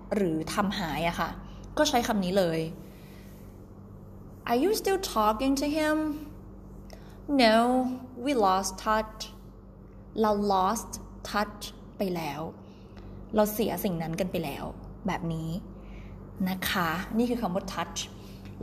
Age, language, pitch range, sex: 20-39, Thai, 175-235 Hz, female